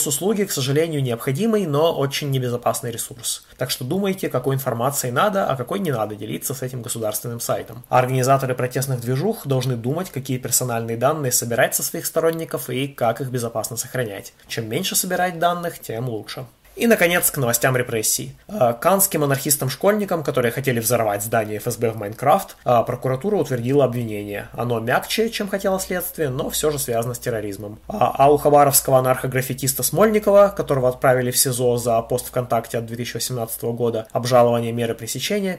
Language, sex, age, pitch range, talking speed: Russian, male, 20-39, 115-150 Hz, 155 wpm